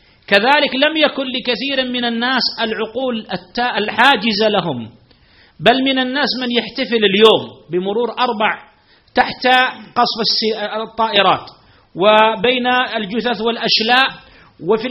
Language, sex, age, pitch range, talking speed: Arabic, male, 40-59, 205-255 Hz, 100 wpm